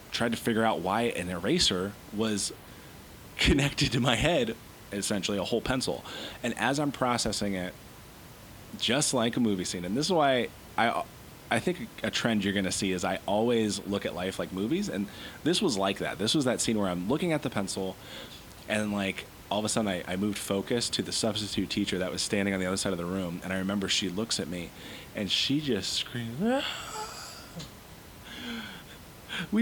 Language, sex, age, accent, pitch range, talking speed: English, male, 30-49, American, 95-125 Hz, 200 wpm